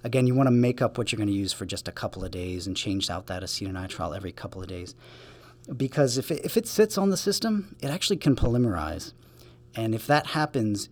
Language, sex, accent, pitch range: English, male, American, 95-120 Hz